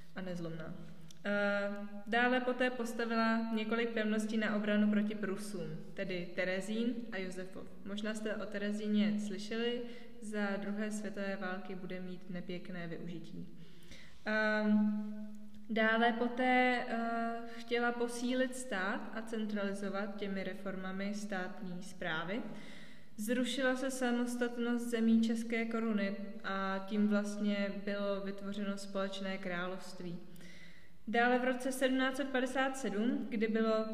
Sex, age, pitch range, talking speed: female, 20-39, 195-225 Hz, 100 wpm